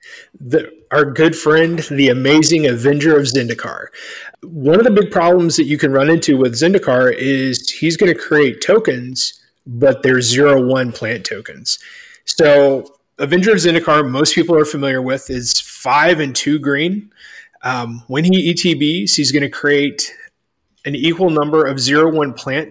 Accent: American